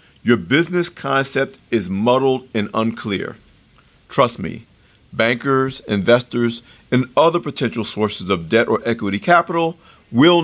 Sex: male